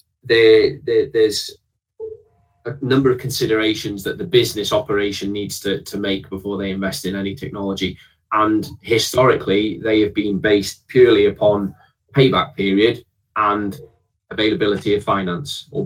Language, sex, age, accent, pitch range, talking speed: English, male, 20-39, British, 100-125 Hz, 130 wpm